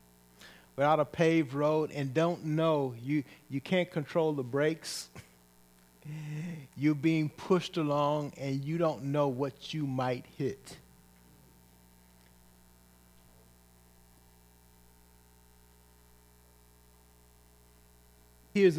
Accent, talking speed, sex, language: American, 85 wpm, male, English